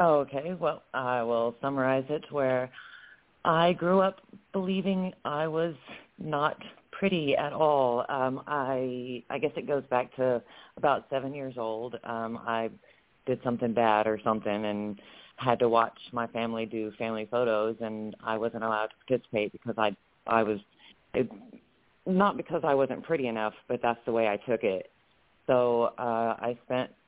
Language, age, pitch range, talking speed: English, 40-59, 115-130 Hz, 160 wpm